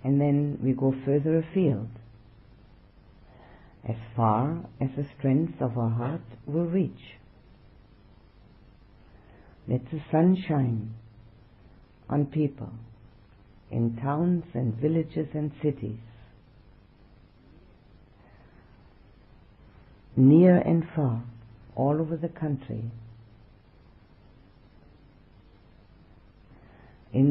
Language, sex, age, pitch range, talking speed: English, female, 50-69, 115-145 Hz, 80 wpm